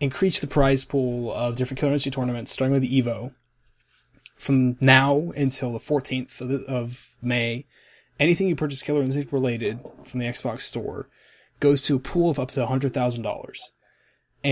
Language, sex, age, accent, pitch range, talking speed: English, male, 20-39, American, 120-140 Hz, 155 wpm